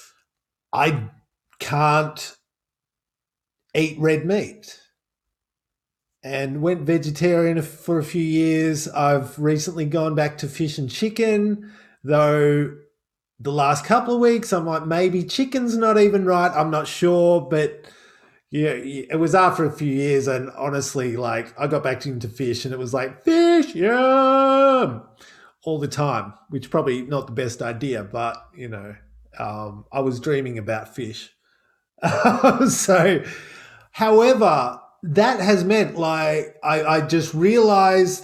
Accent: Australian